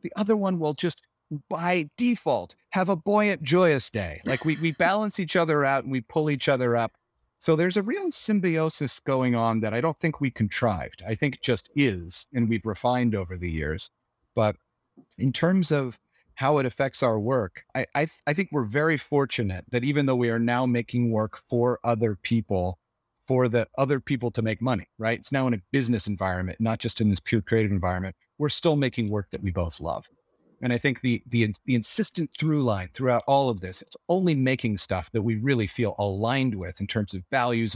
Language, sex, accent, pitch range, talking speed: English, male, American, 110-145 Hz, 205 wpm